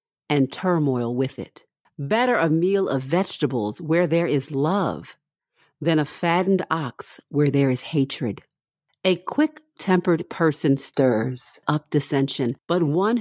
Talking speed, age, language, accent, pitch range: 130 wpm, 50-69, English, American, 140-180 Hz